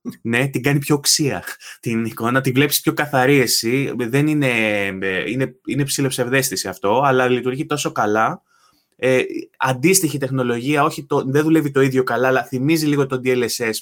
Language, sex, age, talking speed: Greek, male, 20-39, 160 wpm